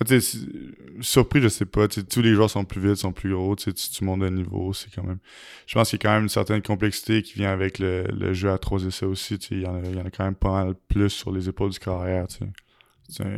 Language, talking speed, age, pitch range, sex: French, 245 wpm, 20-39, 95-105 Hz, male